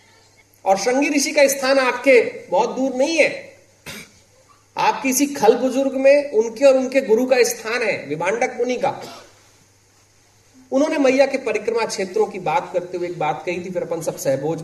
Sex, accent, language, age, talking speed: male, native, Hindi, 40-59, 170 wpm